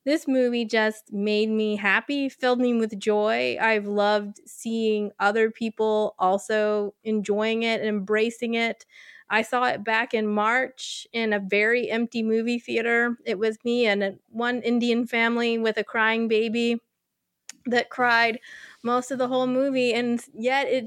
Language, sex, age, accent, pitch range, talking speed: English, female, 20-39, American, 205-235 Hz, 160 wpm